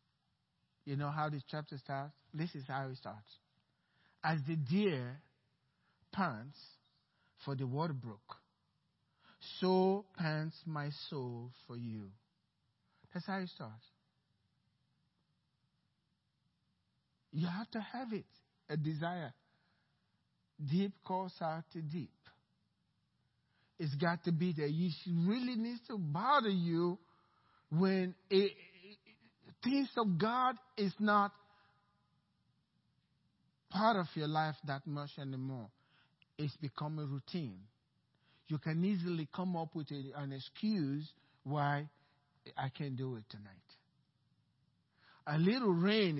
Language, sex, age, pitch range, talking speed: English, male, 60-79, 145-190 Hz, 115 wpm